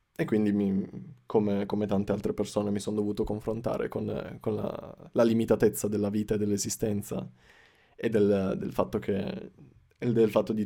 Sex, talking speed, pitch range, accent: male, 165 wpm, 105-110 Hz, native